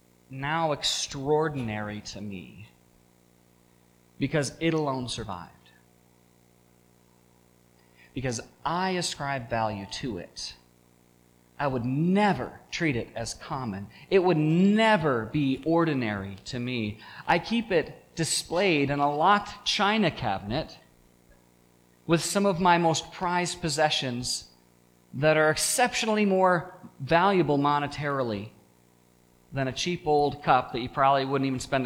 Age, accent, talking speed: 30-49, American, 115 wpm